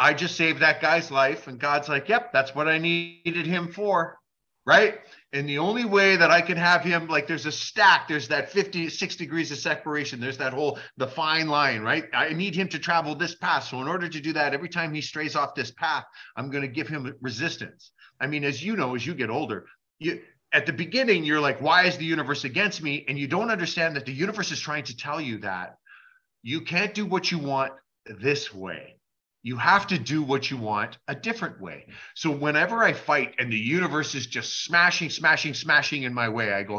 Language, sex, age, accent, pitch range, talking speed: English, male, 30-49, American, 135-170 Hz, 225 wpm